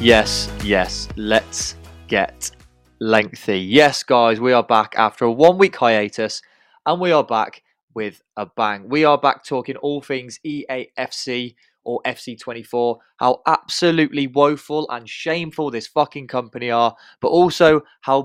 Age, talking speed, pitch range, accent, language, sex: 20-39, 140 wpm, 110-140 Hz, British, English, male